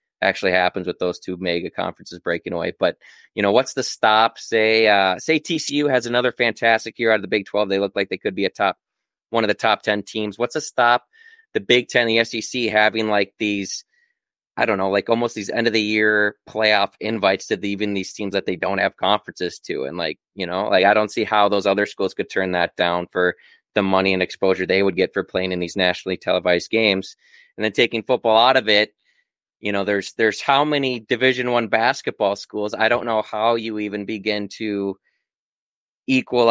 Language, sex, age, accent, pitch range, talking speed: English, male, 20-39, American, 95-115 Hz, 215 wpm